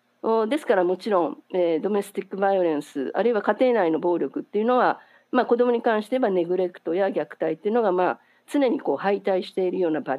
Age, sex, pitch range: 50-69, female, 185-255 Hz